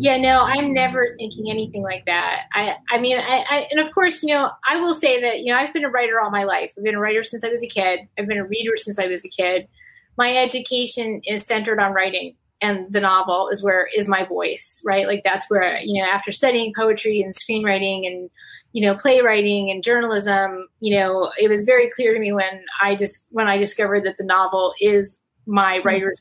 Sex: female